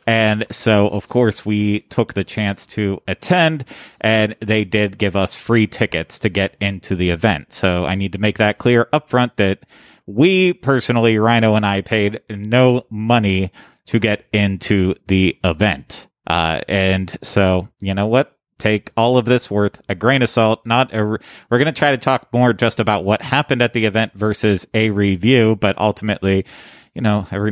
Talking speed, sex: 180 wpm, male